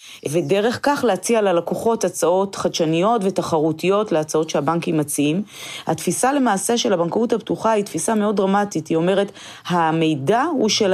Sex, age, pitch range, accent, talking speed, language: female, 30-49, 165-215 Hz, native, 130 wpm, Hebrew